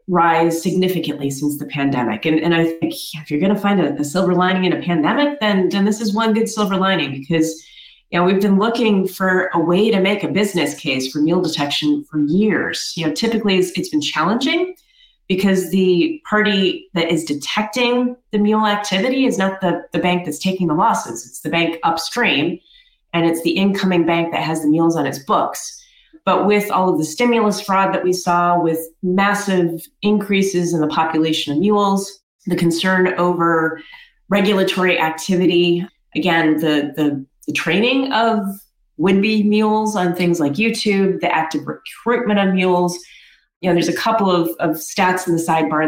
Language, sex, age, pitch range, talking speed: English, female, 30-49, 165-200 Hz, 185 wpm